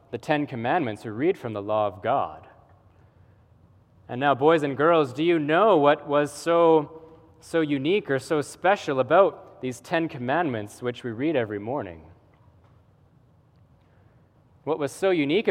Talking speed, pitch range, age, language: 150 wpm, 120-180 Hz, 20-39, English